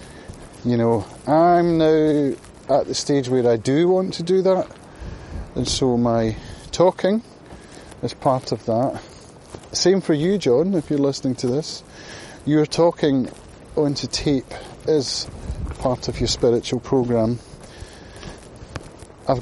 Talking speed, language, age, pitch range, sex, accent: 130 wpm, English, 30-49, 115-150 Hz, male, British